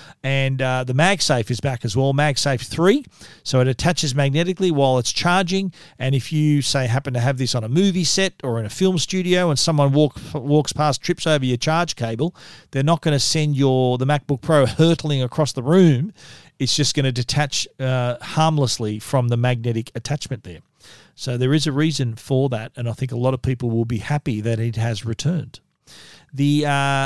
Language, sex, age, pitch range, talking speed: English, male, 40-59, 130-155 Hz, 205 wpm